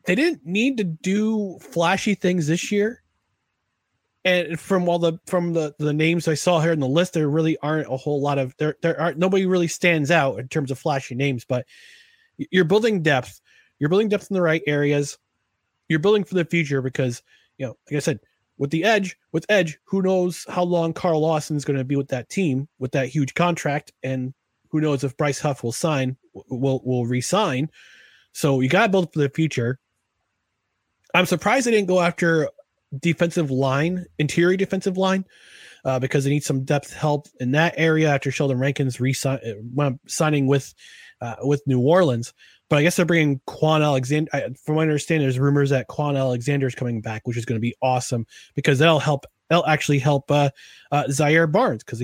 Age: 30-49